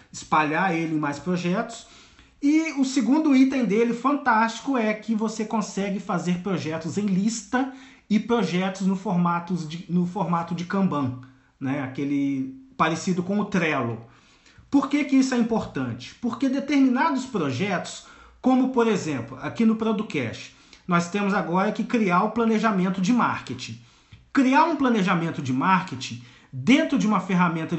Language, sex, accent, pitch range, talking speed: Portuguese, male, Brazilian, 160-235 Hz, 145 wpm